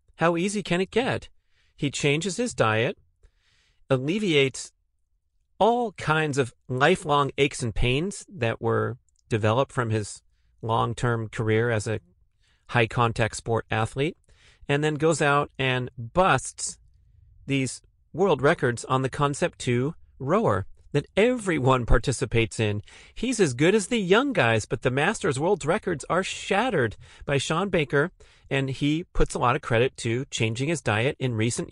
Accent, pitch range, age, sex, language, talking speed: American, 115-145 Hz, 40-59, male, English, 145 wpm